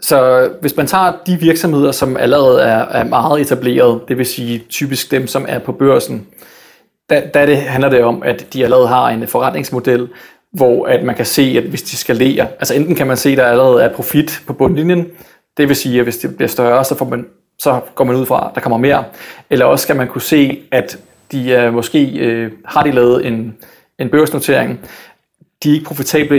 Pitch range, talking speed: 125-150 Hz, 210 wpm